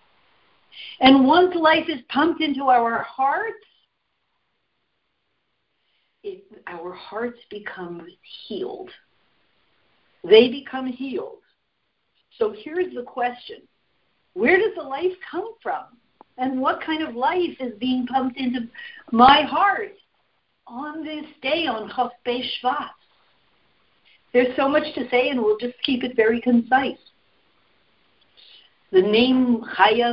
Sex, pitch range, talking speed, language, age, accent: female, 230-310 Hz, 115 wpm, English, 50-69, American